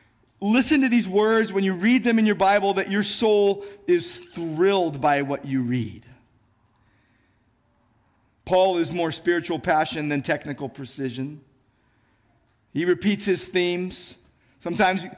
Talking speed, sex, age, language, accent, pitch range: 130 wpm, male, 40-59, English, American, 140-215 Hz